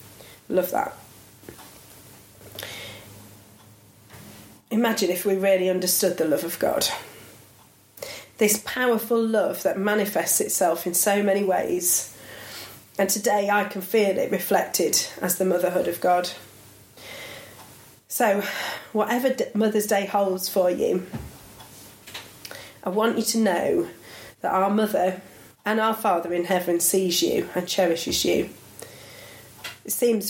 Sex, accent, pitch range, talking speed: female, British, 175-210 Hz, 120 wpm